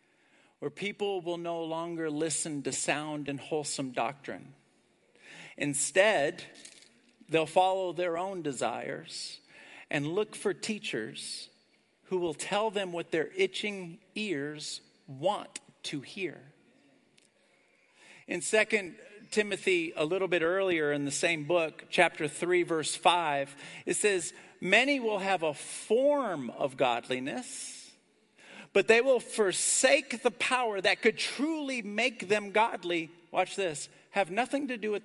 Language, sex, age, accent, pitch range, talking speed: English, male, 50-69, American, 150-215 Hz, 130 wpm